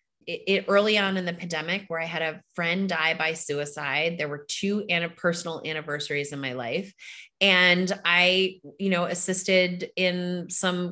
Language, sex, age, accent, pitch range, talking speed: English, female, 30-49, American, 150-190 Hz, 165 wpm